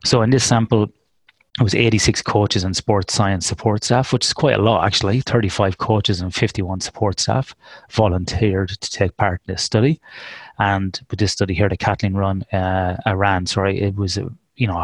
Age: 30-49